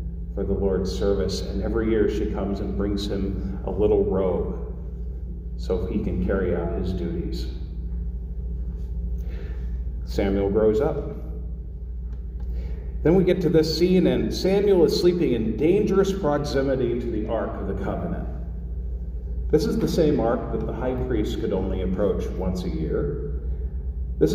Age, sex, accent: 40-59, male, American